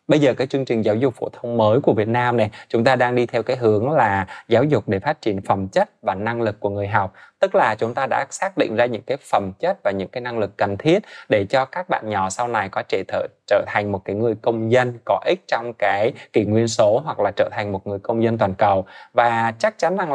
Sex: male